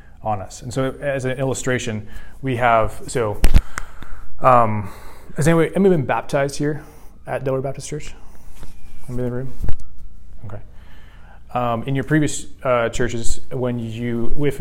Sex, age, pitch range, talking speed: male, 20-39, 105-130 Hz, 140 wpm